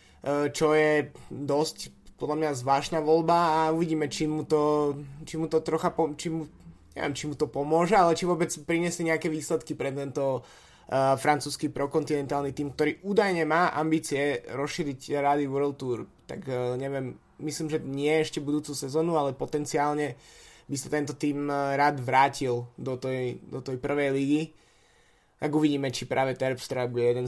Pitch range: 130-155 Hz